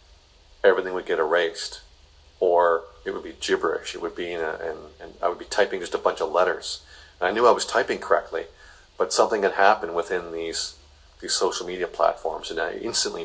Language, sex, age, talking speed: English, male, 40-59, 200 wpm